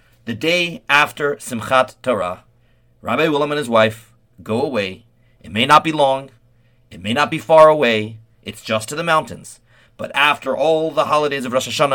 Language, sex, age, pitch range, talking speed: English, male, 40-59, 115-155 Hz, 180 wpm